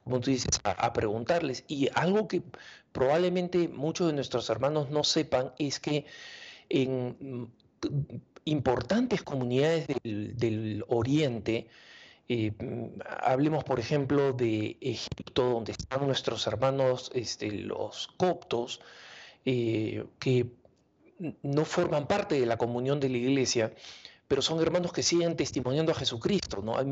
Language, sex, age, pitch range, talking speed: English, male, 40-59, 120-160 Hz, 125 wpm